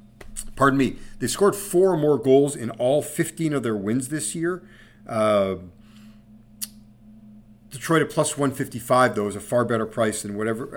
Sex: male